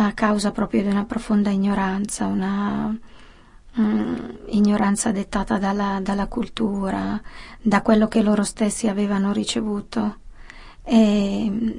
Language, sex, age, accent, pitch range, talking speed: Italian, female, 20-39, native, 200-225 Hz, 100 wpm